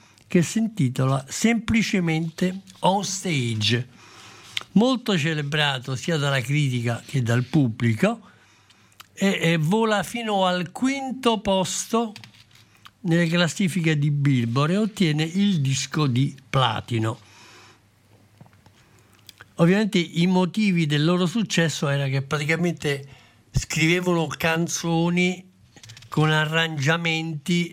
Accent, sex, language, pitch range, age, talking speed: native, male, Italian, 125-170 Hz, 60-79, 95 wpm